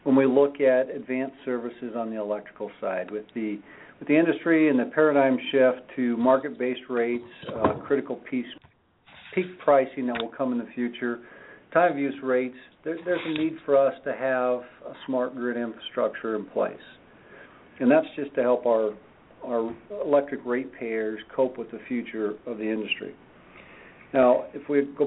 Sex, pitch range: male, 115-135 Hz